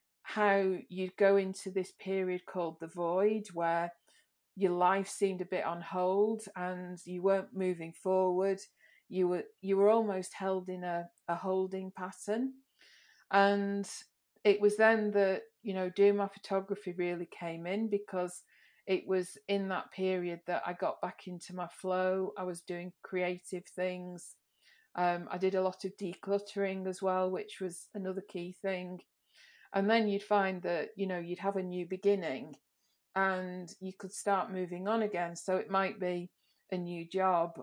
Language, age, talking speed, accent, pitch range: English, 40-59, 165 wpm, British, 180-200 Hz